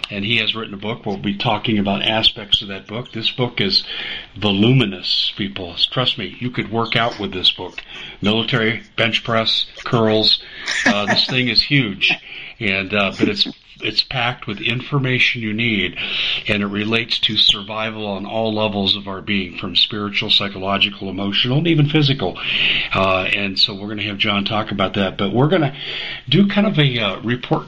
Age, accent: 50-69, American